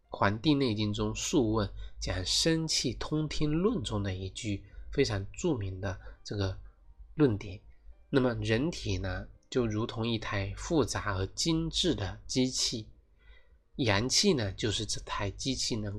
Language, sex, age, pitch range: Chinese, male, 20-39, 95-130 Hz